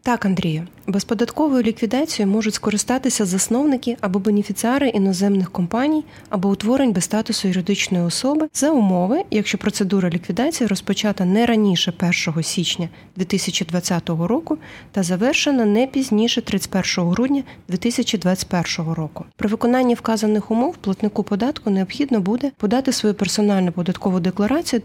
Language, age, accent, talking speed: Ukrainian, 20-39, native, 120 wpm